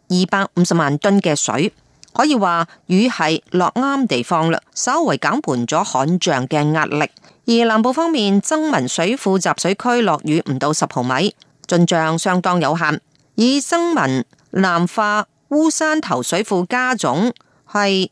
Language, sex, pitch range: Chinese, female, 160-220 Hz